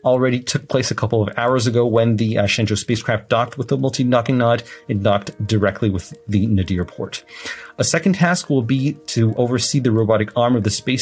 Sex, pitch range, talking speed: male, 105-135 Hz, 210 wpm